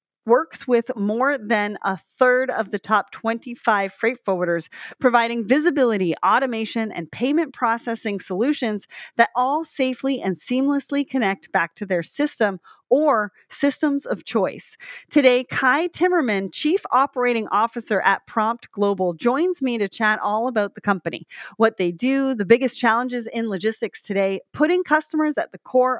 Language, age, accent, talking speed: English, 30-49, American, 150 wpm